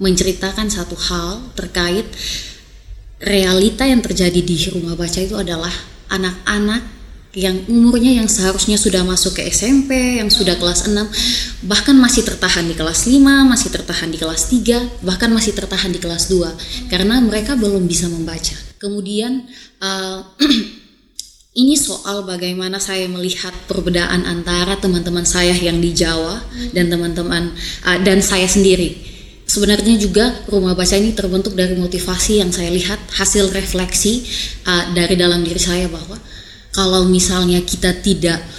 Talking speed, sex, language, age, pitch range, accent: 140 wpm, female, Indonesian, 20-39, 175-210 Hz, native